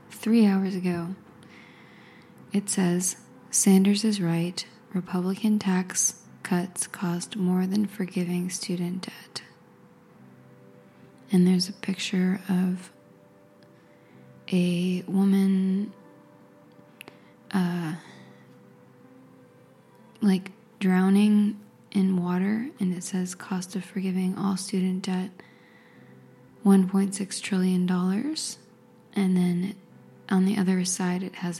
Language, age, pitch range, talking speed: English, 20-39, 180-200 Hz, 95 wpm